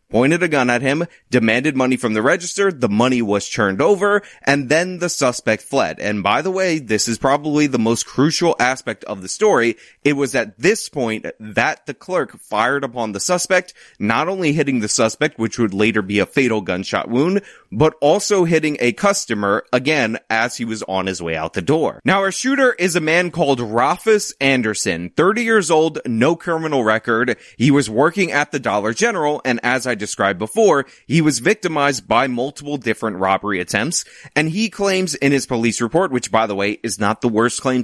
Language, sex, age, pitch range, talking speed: English, male, 30-49, 105-155 Hz, 200 wpm